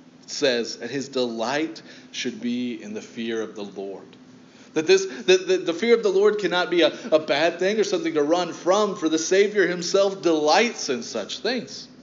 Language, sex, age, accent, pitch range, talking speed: English, male, 30-49, American, 145-205 Hz, 190 wpm